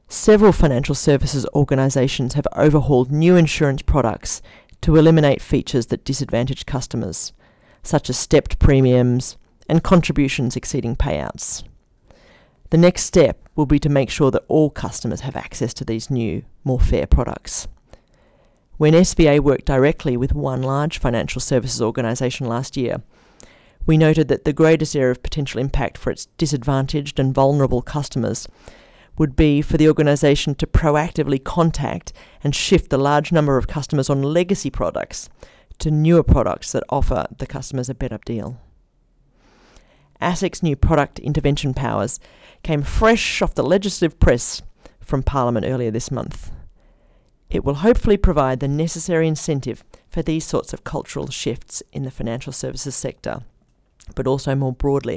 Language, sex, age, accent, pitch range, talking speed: English, female, 40-59, Australian, 130-155 Hz, 145 wpm